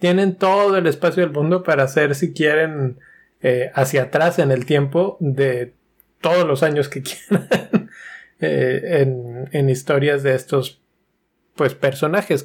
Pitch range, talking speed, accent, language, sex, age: 130-160 Hz, 145 wpm, Mexican, Spanish, male, 20-39